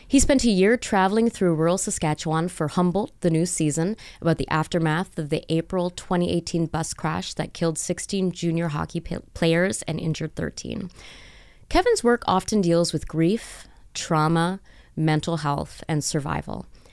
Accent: American